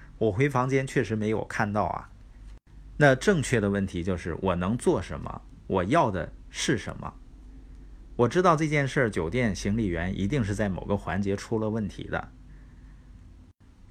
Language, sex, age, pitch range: Chinese, male, 50-69, 95-125 Hz